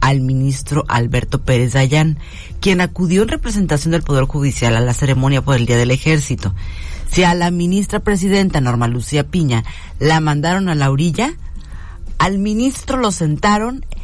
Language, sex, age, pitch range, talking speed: Spanish, female, 40-59, 115-165 Hz, 160 wpm